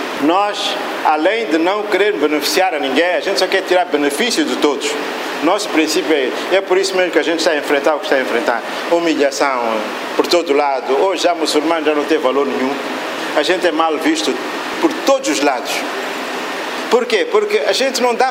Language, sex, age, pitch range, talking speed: Portuguese, male, 50-69, 165-265 Hz, 205 wpm